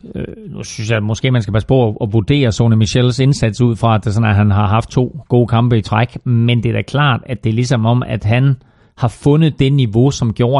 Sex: male